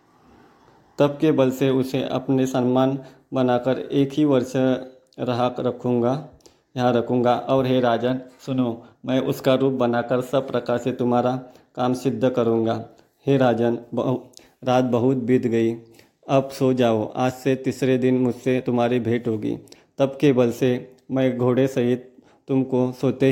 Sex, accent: male, native